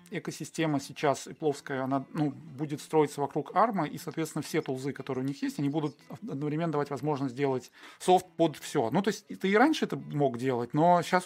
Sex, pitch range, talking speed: male, 125-155 Hz, 205 wpm